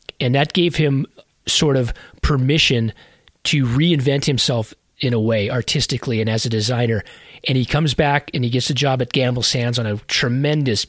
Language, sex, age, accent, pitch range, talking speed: English, male, 30-49, American, 120-145 Hz, 180 wpm